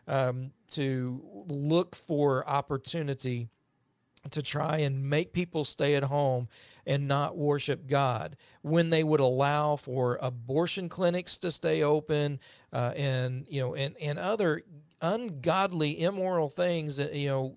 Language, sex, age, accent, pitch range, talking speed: English, male, 40-59, American, 135-160 Hz, 135 wpm